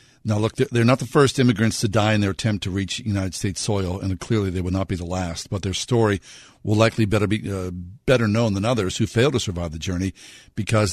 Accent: American